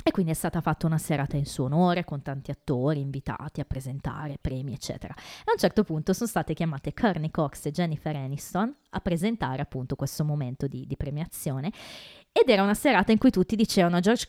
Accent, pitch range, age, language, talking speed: native, 155-200 Hz, 20-39, Italian, 200 wpm